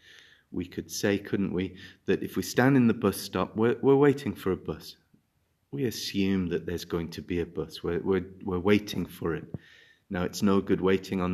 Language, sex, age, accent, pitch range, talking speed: English, male, 30-49, British, 95-120 Hz, 210 wpm